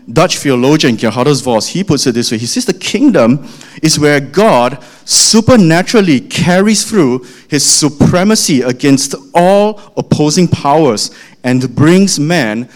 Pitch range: 120-170 Hz